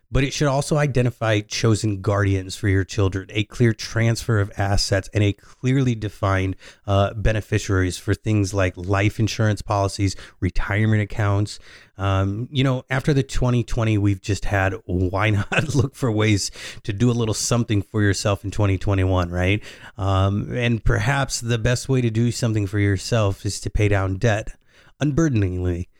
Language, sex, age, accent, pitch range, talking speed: English, male, 30-49, American, 100-120 Hz, 160 wpm